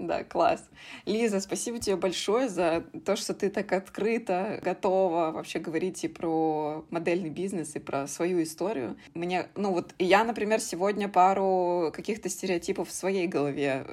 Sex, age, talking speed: female, 20-39, 150 wpm